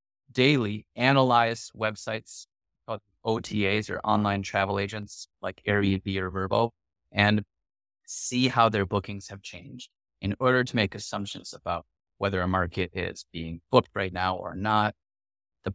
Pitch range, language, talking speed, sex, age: 95-110 Hz, English, 140 wpm, male, 30-49